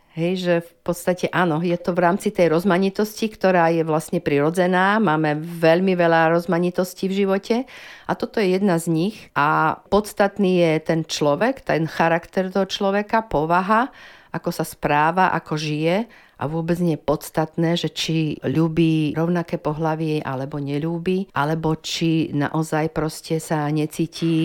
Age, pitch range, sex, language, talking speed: 50-69, 155-185 Hz, female, Slovak, 145 wpm